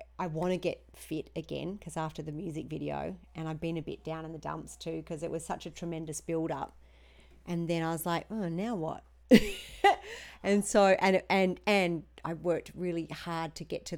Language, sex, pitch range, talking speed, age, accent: English, female, 155-180 Hz, 210 wpm, 40-59, Australian